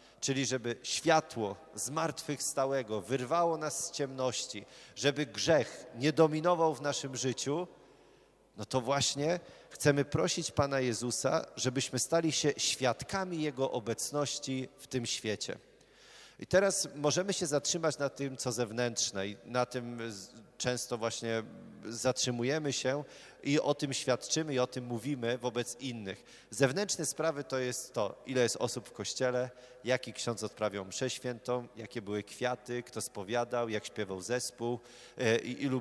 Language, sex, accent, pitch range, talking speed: Polish, male, native, 120-145 Hz, 140 wpm